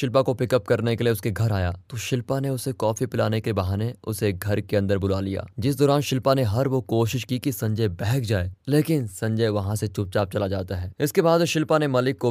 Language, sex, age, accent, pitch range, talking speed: Hindi, male, 20-39, native, 105-130 Hz, 100 wpm